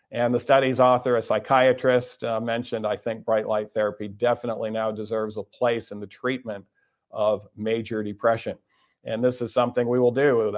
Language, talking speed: English, 180 wpm